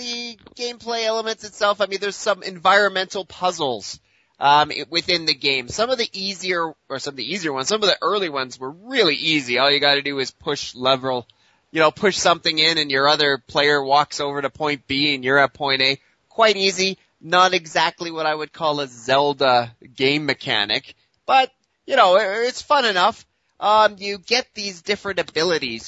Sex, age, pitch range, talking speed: male, 30-49, 135-185 Hz, 195 wpm